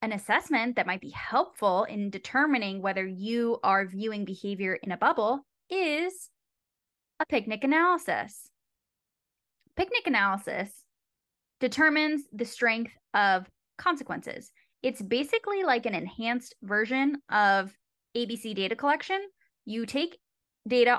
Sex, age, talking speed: female, 10-29, 115 wpm